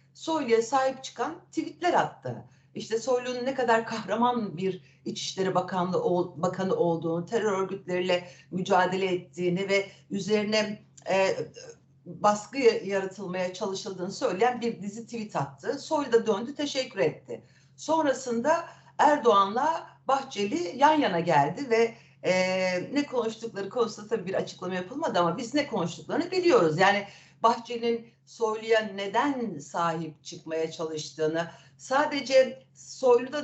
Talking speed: 110 wpm